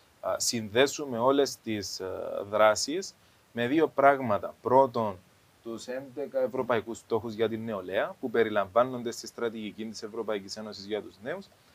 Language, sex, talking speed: Greek, male, 130 wpm